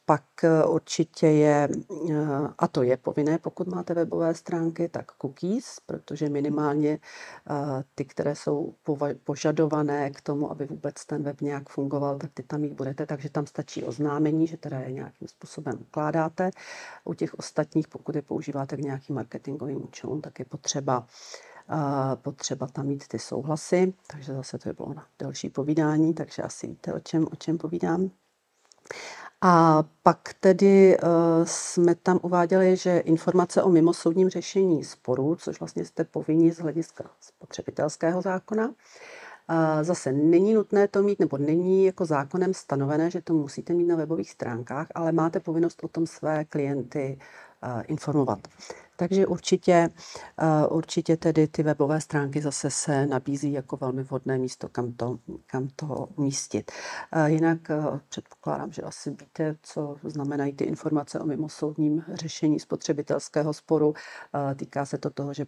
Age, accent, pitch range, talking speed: 50-69, native, 140-170 Hz, 150 wpm